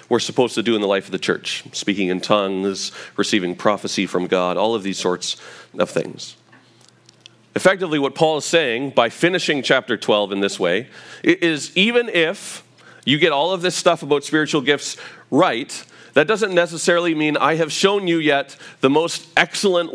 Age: 40-59